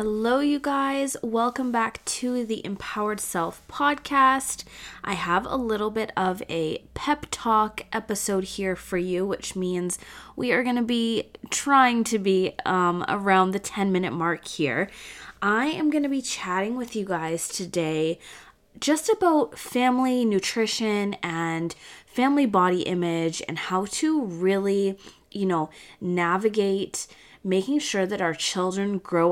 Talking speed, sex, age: 145 wpm, female, 20-39